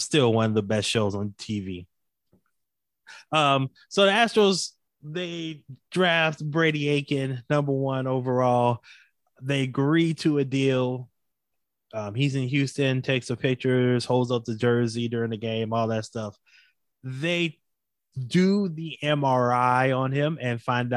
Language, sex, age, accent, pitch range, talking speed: English, male, 20-39, American, 115-140 Hz, 140 wpm